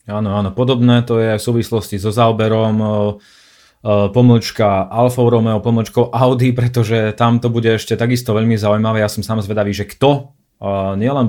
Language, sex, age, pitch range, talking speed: Slovak, male, 30-49, 100-120 Hz, 155 wpm